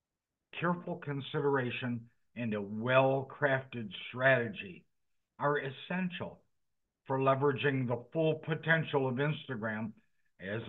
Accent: American